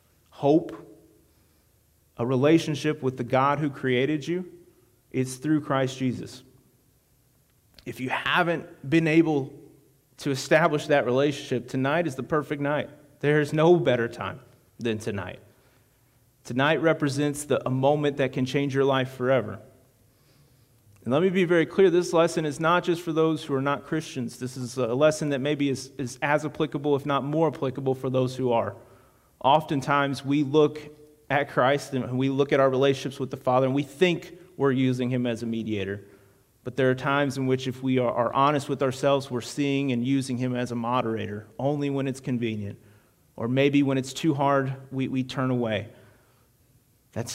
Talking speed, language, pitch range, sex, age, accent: 175 wpm, English, 125-145 Hz, male, 30-49, American